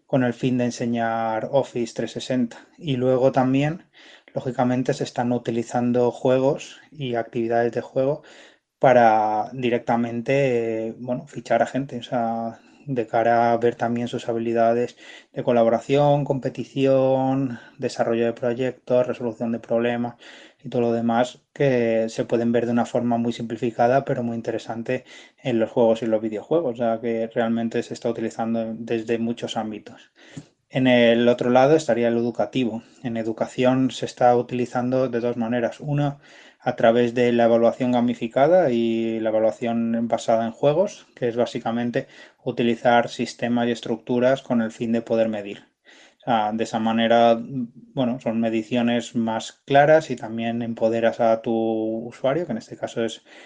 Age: 20-39